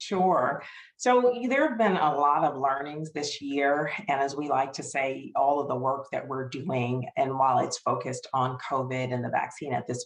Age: 40-59